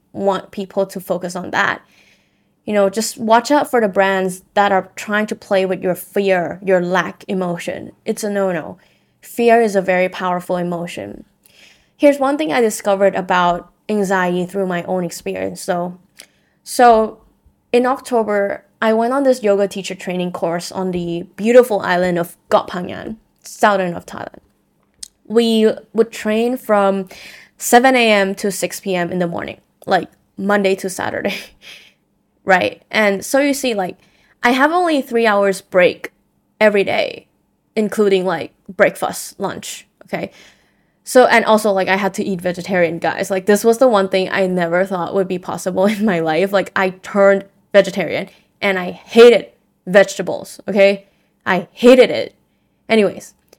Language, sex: Thai, female